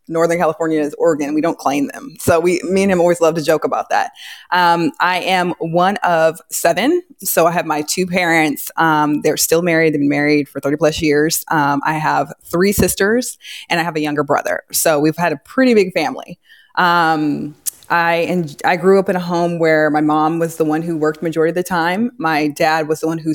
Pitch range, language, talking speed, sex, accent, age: 155-185 Hz, English, 225 wpm, female, American, 20-39